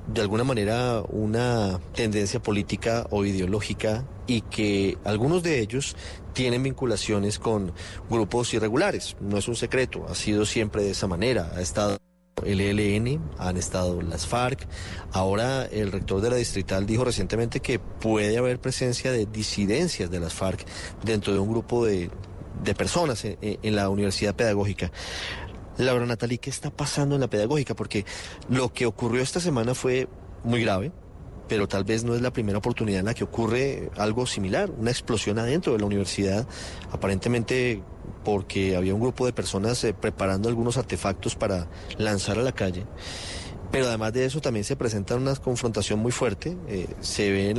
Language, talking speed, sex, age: Spanish, 165 wpm, male, 30-49